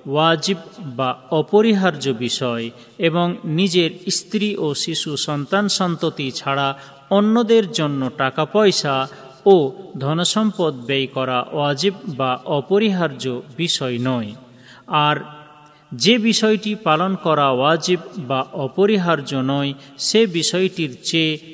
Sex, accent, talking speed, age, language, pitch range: male, native, 105 wpm, 40-59, Bengali, 135-190 Hz